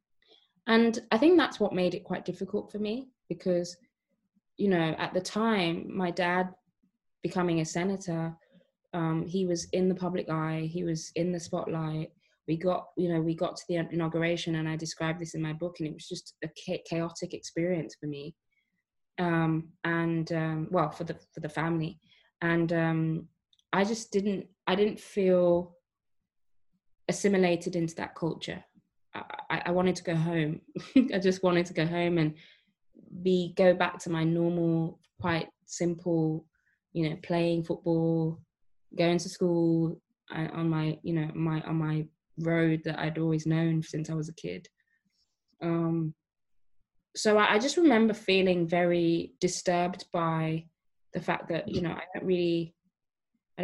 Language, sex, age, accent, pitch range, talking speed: English, female, 20-39, British, 160-185 Hz, 160 wpm